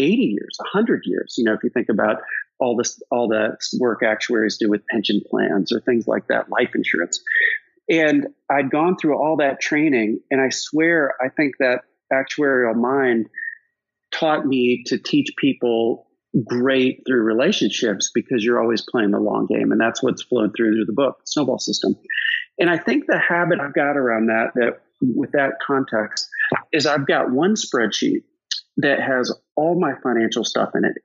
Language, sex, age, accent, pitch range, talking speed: English, male, 40-59, American, 120-165 Hz, 180 wpm